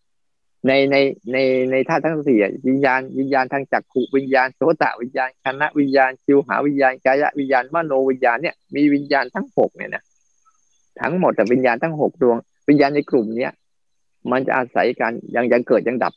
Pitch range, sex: 125-150 Hz, male